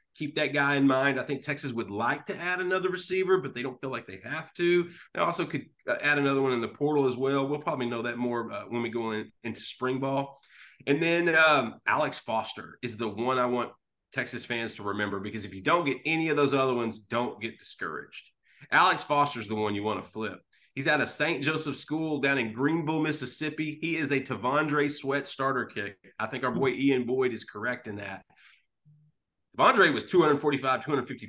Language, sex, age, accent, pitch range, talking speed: English, male, 30-49, American, 120-150 Hz, 220 wpm